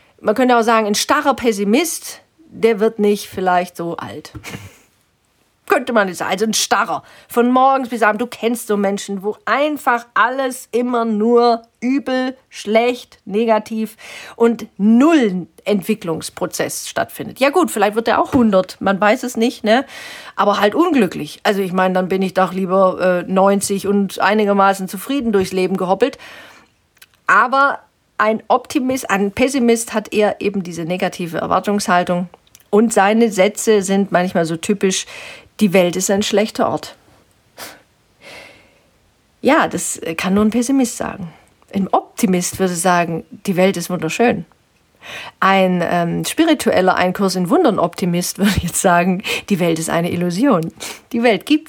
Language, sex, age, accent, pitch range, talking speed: German, female, 40-59, German, 185-235 Hz, 145 wpm